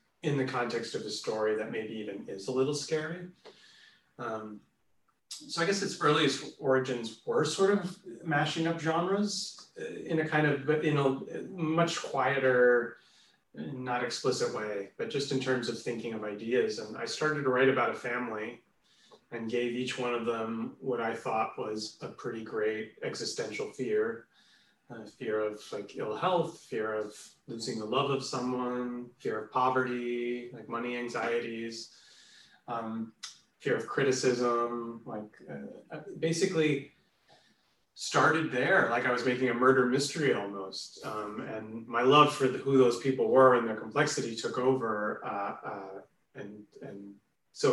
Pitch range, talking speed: 115-145 Hz, 155 wpm